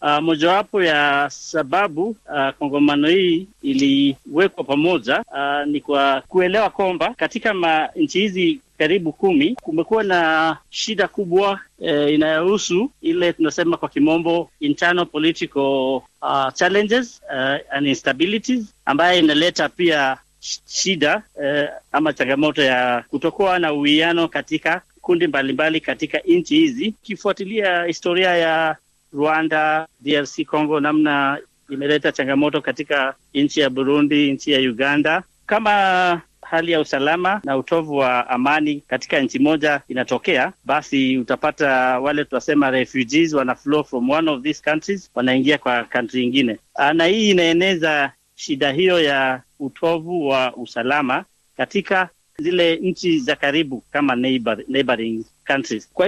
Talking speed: 125 wpm